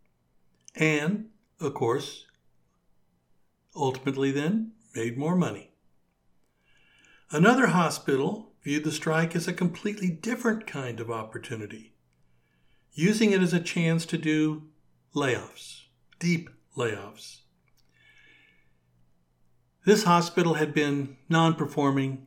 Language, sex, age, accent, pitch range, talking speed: English, male, 60-79, American, 95-160 Hz, 95 wpm